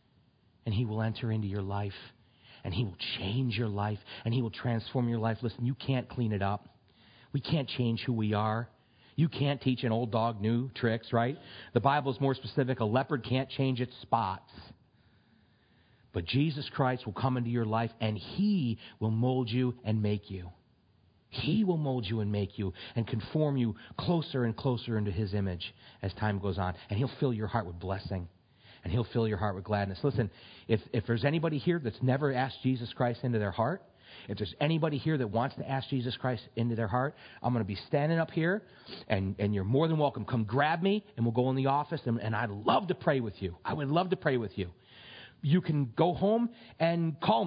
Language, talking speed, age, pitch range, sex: English, 215 wpm, 40-59, 110-140 Hz, male